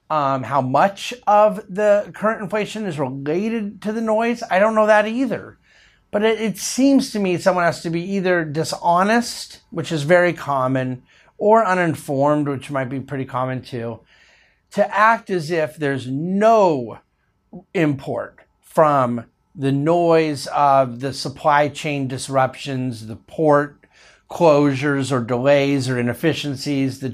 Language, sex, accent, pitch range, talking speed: English, male, American, 130-185 Hz, 140 wpm